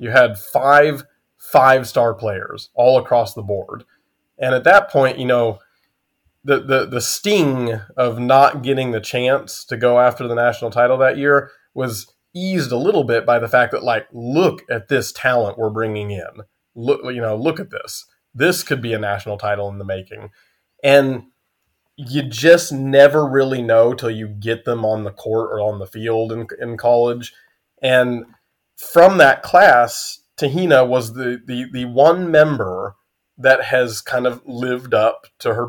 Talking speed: 175 wpm